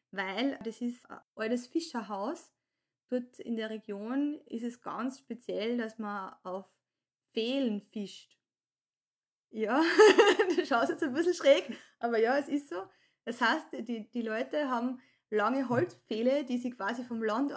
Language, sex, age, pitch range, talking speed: German, female, 20-39, 220-275 Hz, 145 wpm